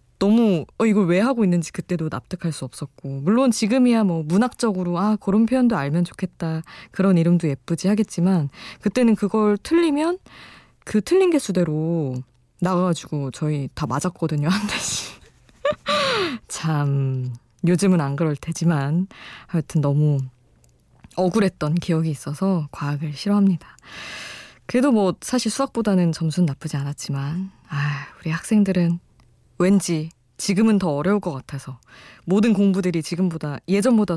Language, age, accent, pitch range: Korean, 20-39, native, 145-205 Hz